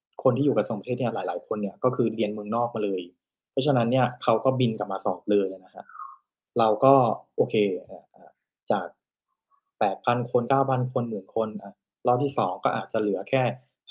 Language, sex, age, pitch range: Thai, male, 20-39, 105-130 Hz